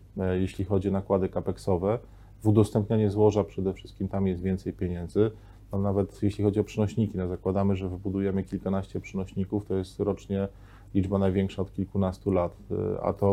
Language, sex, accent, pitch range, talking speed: Polish, male, native, 95-105 Hz, 160 wpm